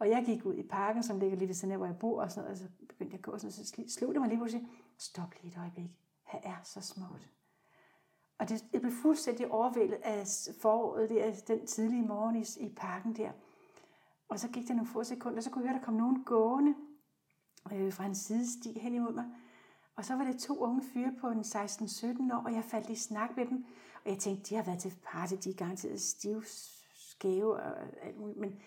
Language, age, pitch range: Danish, 60-79, 210-260 Hz